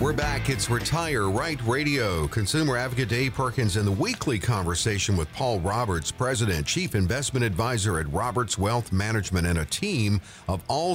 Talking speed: 165 wpm